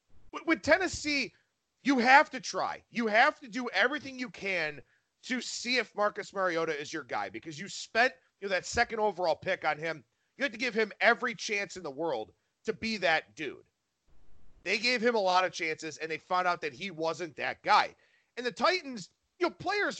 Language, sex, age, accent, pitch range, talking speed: English, male, 40-59, American, 180-265 Hz, 205 wpm